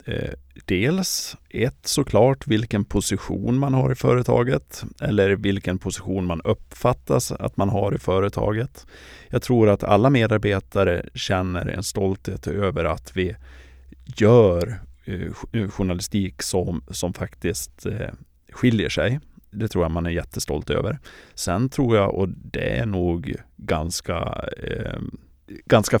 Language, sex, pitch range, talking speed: Swedish, male, 85-110 Hz, 120 wpm